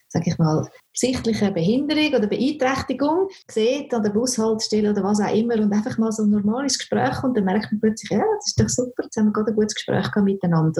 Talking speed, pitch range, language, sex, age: 220 wpm, 185-230 Hz, German, female, 30-49